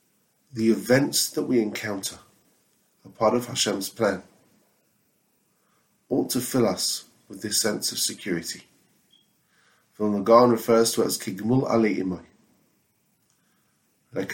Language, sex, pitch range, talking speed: English, male, 105-120 Hz, 115 wpm